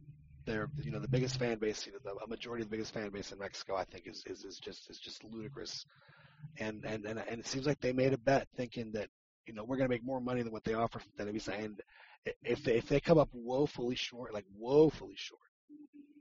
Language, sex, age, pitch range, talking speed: English, male, 30-49, 110-145 Hz, 250 wpm